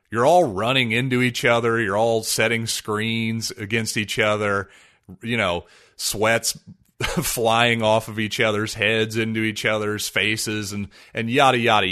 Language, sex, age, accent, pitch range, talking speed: English, male, 30-49, American, 110-125 Hz, 150 wpm